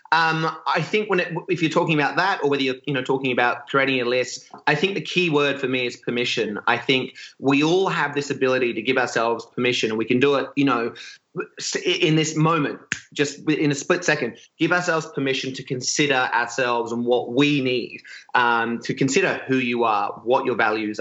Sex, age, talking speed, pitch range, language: male, 30-49, 210 wpm, 125-160 Hz, English